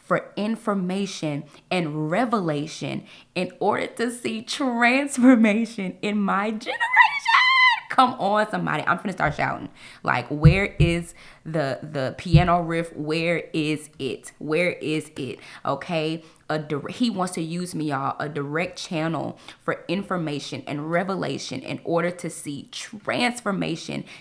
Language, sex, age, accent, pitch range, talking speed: English, female, 20-39, American, 155-225 Hz, 125 wpm